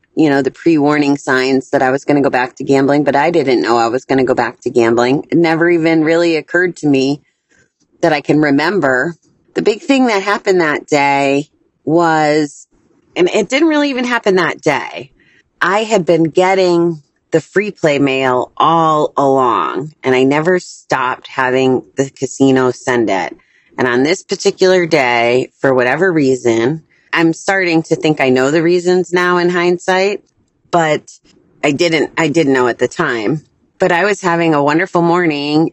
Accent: American